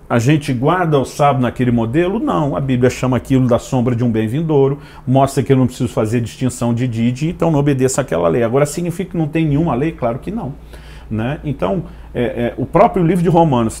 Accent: Brazilian